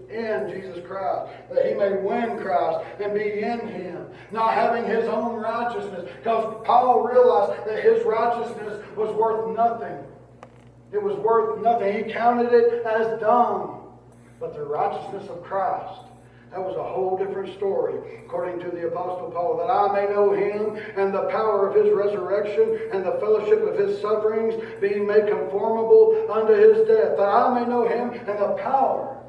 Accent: American